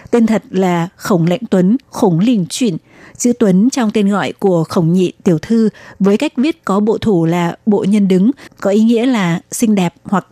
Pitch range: 190-225 Hz